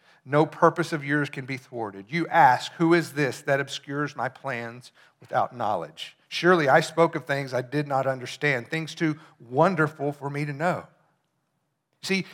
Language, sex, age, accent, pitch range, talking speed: English, male, 50-69, American, 135-170 Hz, 170 wpm